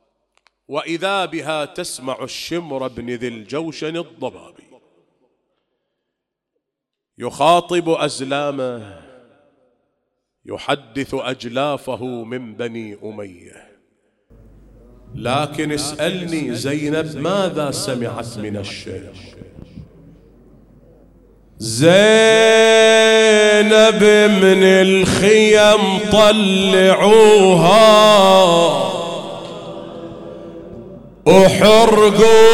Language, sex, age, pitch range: English, male, 40-59, 155-225 Hz